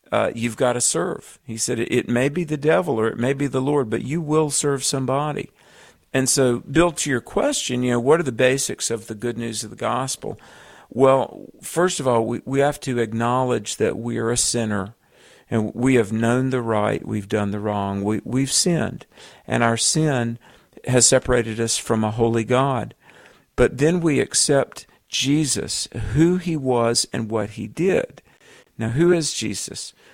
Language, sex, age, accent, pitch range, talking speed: English, male, 50-69, American, 115-135 Hz, 190 wpm